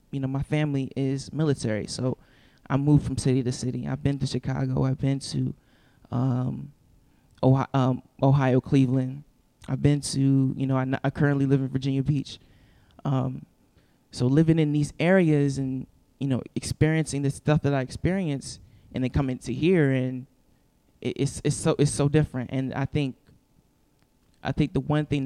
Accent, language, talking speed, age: American, English, 175 wpm, 20-39